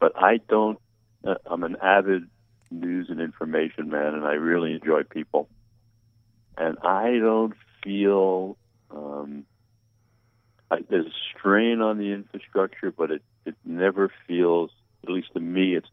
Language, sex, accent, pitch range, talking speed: English, male, American, 85-115 Hz, 145 wpm